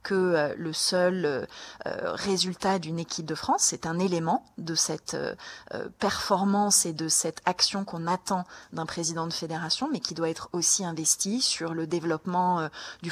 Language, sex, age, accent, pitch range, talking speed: French, female, 30-49, French, 165-195 Hz, 155 wpm